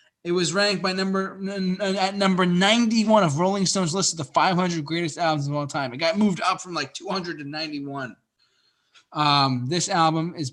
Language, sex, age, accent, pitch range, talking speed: English, male, 20-39, American, 145-195 Hz, 170 wpm